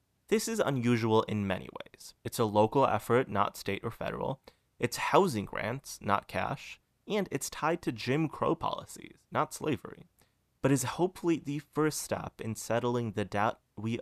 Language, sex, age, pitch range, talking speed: English, male, 30-49, 105-130 Hz, 165 wpm